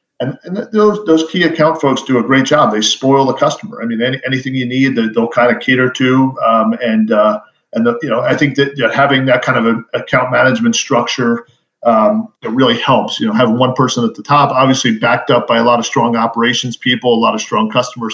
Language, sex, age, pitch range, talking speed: English, male, 40-59, 120-145 Hz, 245 wpm